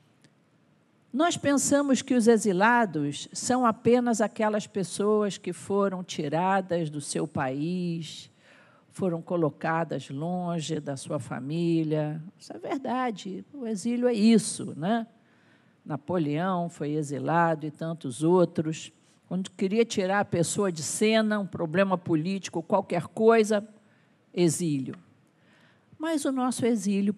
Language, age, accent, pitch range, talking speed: Portuguese, 50-69, Brazilian, 170-235 Hz, 115 wpm